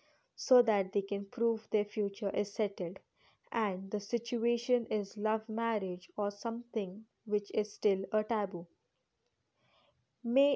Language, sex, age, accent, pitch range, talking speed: Hindi, female, 20-39, native, 200-235 Hz, 130 wpm